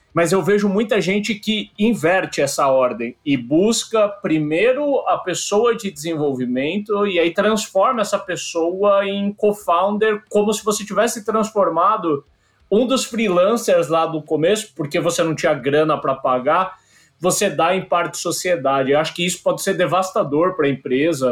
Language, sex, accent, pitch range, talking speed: Portuguese, male, Brazilian, 150-195 Hz, 160 wpm